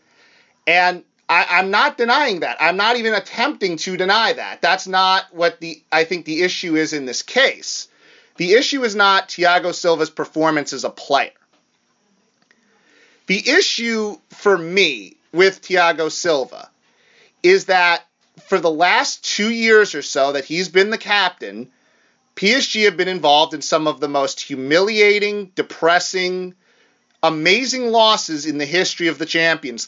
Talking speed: 150 wpm